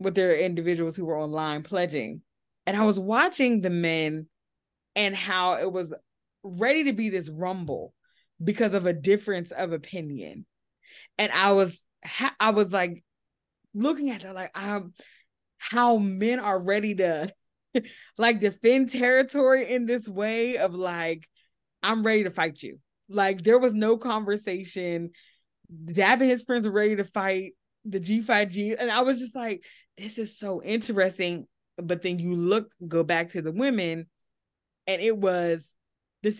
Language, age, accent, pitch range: English, 20-39, American, 175-225 Hz